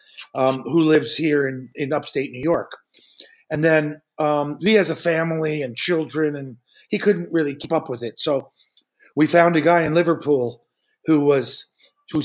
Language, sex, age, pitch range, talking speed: English, male, 50-69, 150-195 Hz, 175 wpm